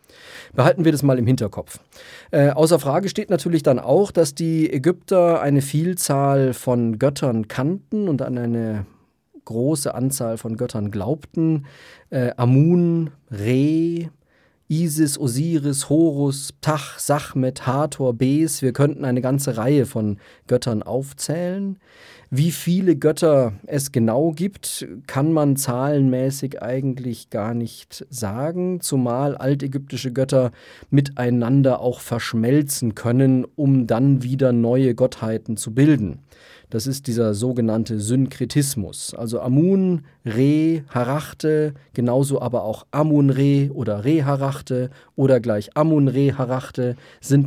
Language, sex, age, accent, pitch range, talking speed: German, male, 40-59, German, 120-150 Hz, 125 wpm